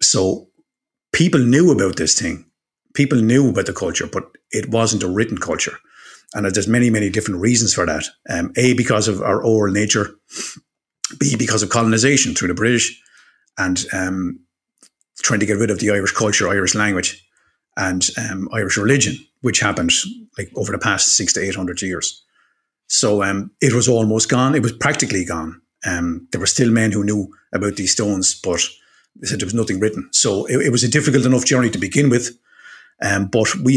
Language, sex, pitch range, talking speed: Danish, male, 100-125 Hz, 190 wpm